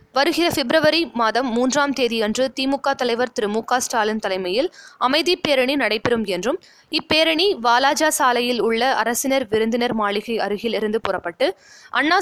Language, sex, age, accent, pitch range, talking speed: Tamil, female, 20-39, native, 220-285 Hz, 135 wpm